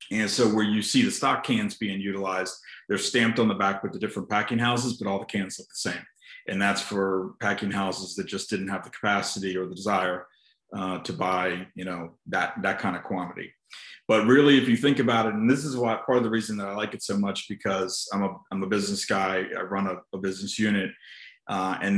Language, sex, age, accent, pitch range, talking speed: English, male, 30-49, American, 95-110 Hz, 235 wpm